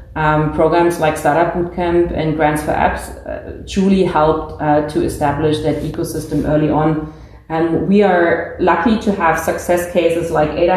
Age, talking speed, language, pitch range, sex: 30-49, 160 wpm, English, 155-175 Hz, female